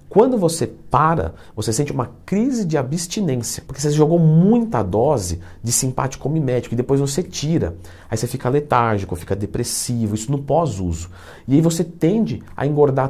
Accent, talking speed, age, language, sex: Brazilian, 165 wpm, 40-59, Portuguese, male